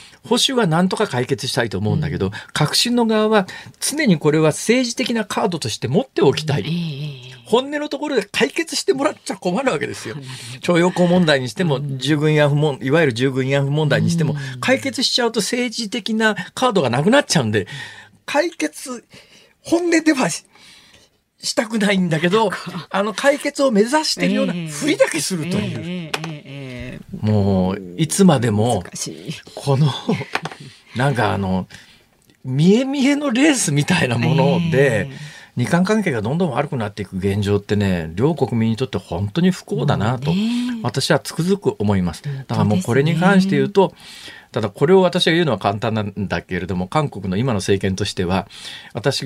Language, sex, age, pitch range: Japanese, male, 40-59, 125-200 Hz